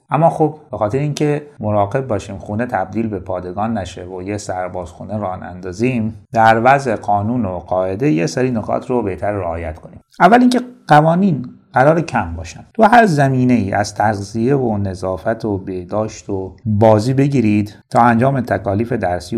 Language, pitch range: Persian, 100-135 Hz